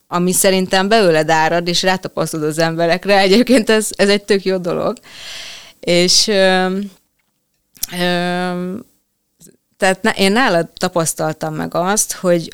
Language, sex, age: Hungarian, female, 30-49